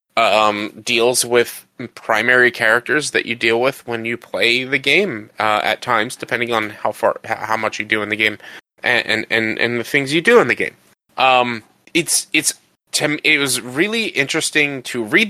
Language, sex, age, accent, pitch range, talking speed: English, male, 30-49, American, 110-135 Hz, 195 wpm